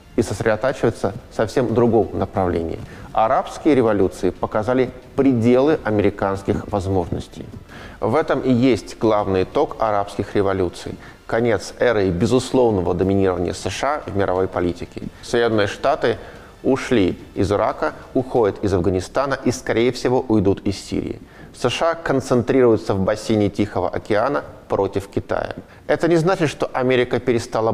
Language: Russian